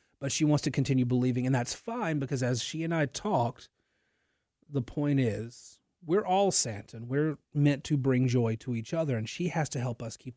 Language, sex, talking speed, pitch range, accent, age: English, male, 215 wpm, 115-160 Hz, American, 30-49